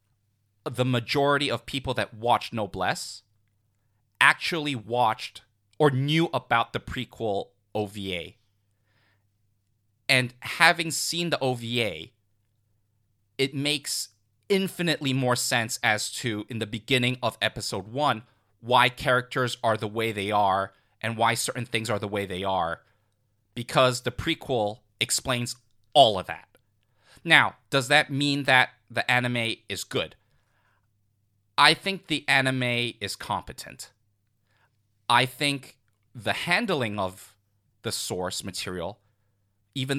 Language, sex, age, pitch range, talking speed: English, male, 30-49, 105-130 Hz, 120 wpm